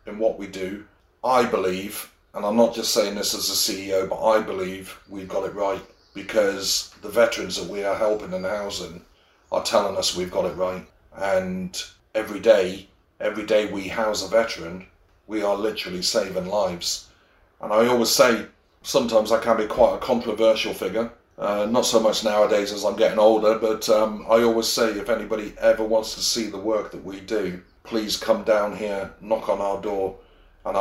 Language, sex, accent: English, male, British